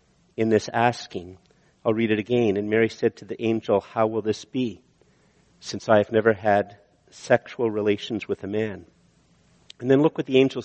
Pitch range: 115-140 Hz